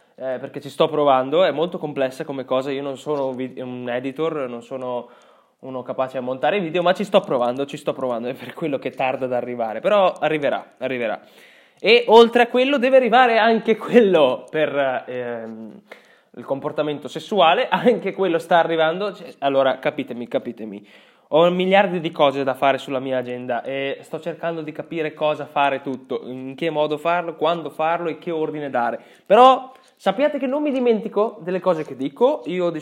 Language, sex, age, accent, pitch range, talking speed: Italian, male, 20-39, native, 130-170 Hz, 180 wpm